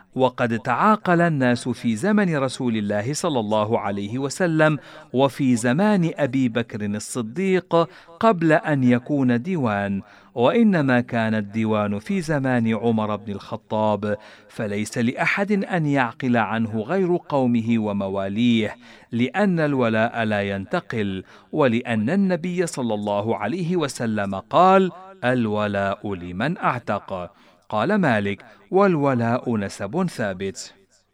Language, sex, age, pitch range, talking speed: Arabic, male, 50-69, 110-165 Hz, 105 wpm